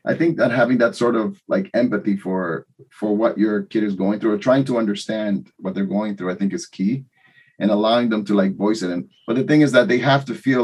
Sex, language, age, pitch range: male, English, 30-49, 110-145 Hz